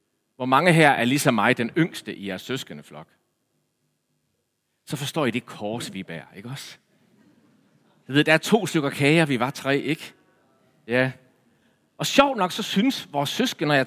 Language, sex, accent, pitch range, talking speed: English, male, Danish, 125-190 Hz, 175 wpm